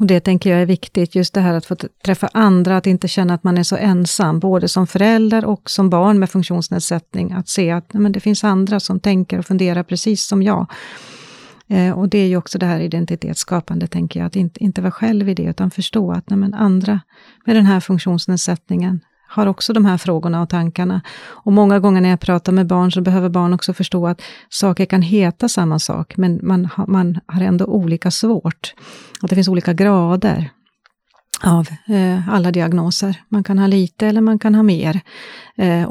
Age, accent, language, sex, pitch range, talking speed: 40-59, native, Swedish, female, 175-200 Hz, 195 wpm